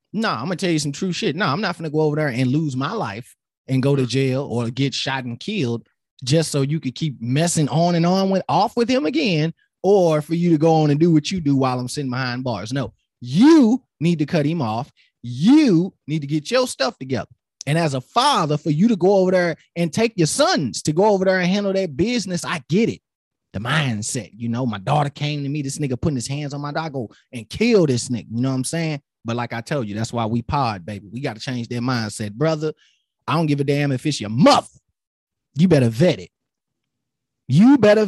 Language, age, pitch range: English, 20-39, 130-190 Hz